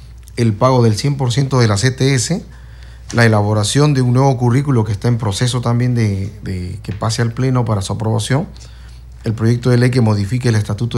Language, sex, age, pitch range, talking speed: Spanish, male, 40-59, 105-125 Hz, 190 wpm